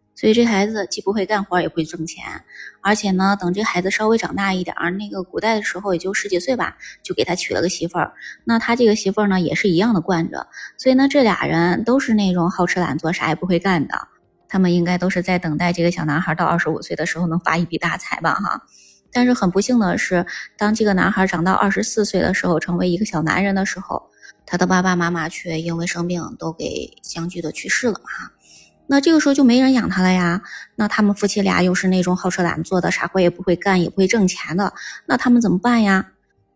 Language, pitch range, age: Chinese, 170-205 Hz, 20-39